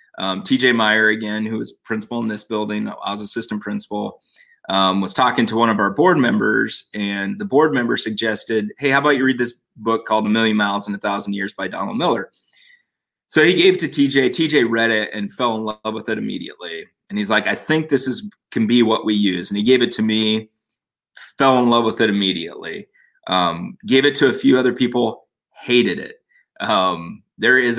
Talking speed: 215 wpm